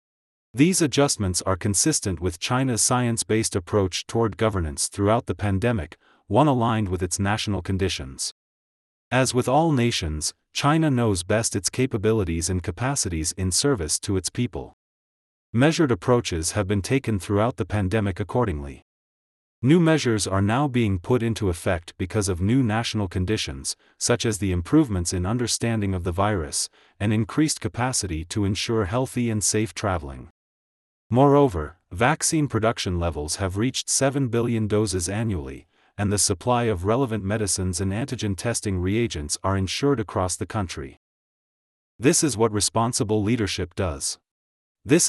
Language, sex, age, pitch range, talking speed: English, male, 30-49, 95-120 Hz, 140 wpm